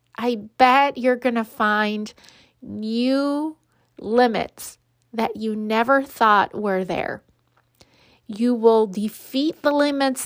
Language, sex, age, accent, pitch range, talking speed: English, female, 30-49, American, 210-255 Hz, 105 wpm